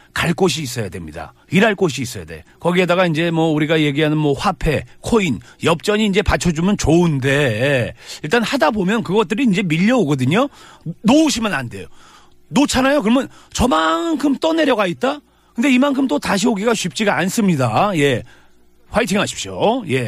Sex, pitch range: male, 155-245 Hz